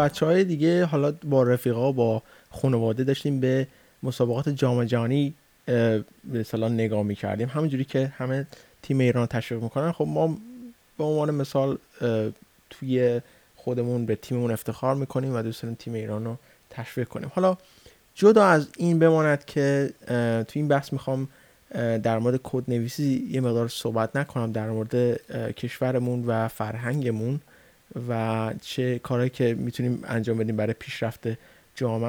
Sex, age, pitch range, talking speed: male, 30-49, 115-140 Hz, 135 wpm